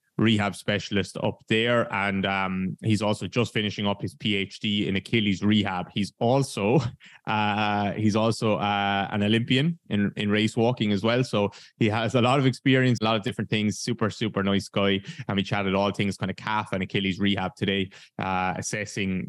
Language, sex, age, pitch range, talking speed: English, male, 20-39, 100-115 Hz, 185 wpm